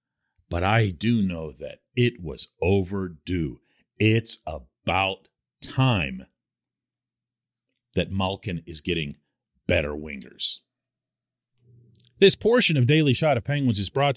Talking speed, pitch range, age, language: 110 wpm, 100-160 Hz, 40-59, English